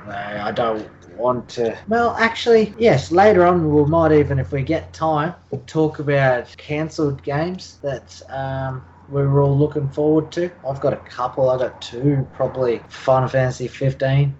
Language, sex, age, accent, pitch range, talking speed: English, male, 20-39, Australian, 120-150 Hz, 170 wpm